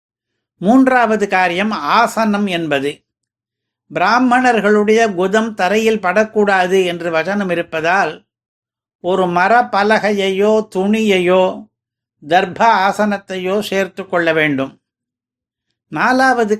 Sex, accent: male, native